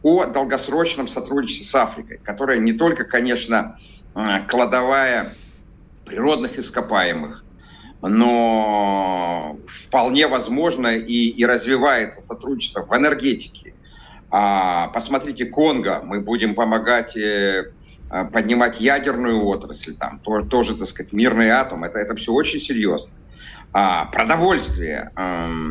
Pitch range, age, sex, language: 110-155 Hz, 50-69, male, Russian